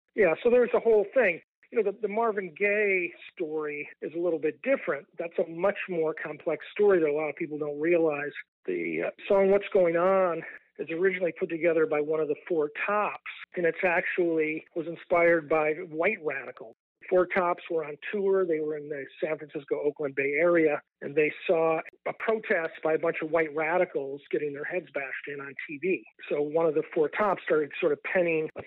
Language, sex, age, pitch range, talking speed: English, male, 50-69, 150-195 Hz, 205 wpm